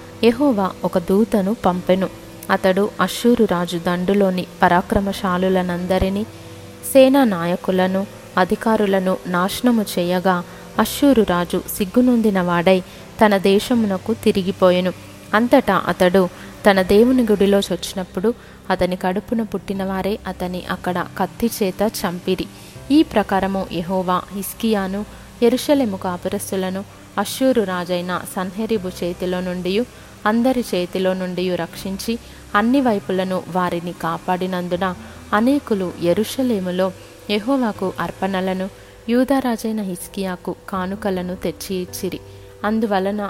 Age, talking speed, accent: 20-39, 85 wpm, native